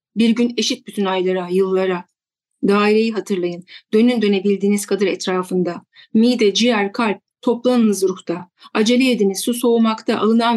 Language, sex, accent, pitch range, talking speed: Turkish, female, native, 185-230 Hz, 125 wpm